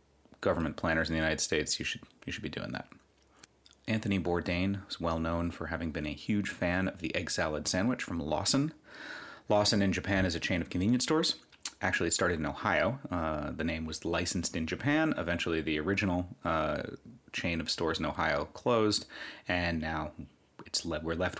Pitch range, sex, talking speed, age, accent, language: 80-105 Hz, male, 190 wpm, 30-49, American, English